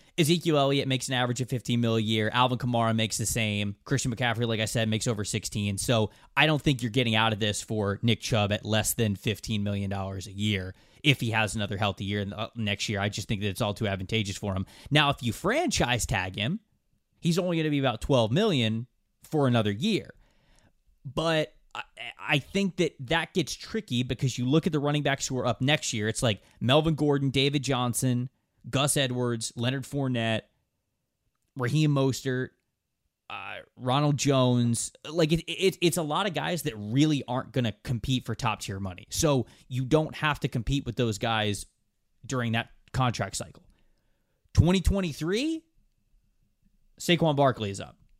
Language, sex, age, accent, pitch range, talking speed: English, male, 20-39, American, 110-145 Hz, 180 wpm